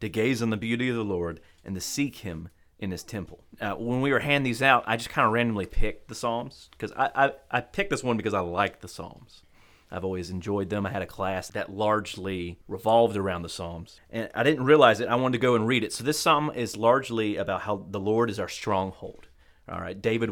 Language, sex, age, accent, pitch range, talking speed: English, male, 30-49, American, 95-125 Hz, 245 wpm